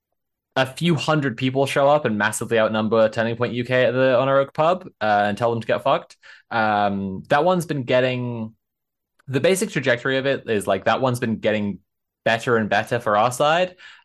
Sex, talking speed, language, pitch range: male, 200 wpm, English, 105-130 Hz